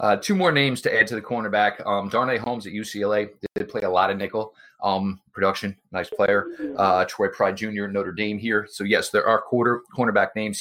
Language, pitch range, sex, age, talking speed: English, 105-135 Hz, male, 30-49, 215 wpm